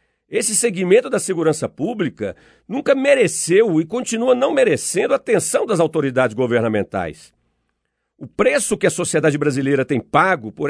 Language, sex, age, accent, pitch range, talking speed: Portuguese, male, 50-69, Brazilian, 145-225 Hz, 140 wpm